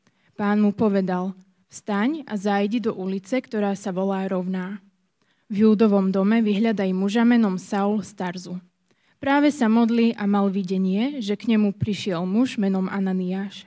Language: Slovak